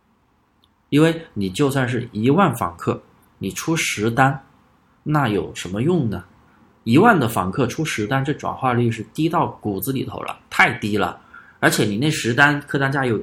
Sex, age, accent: male, 20-39, native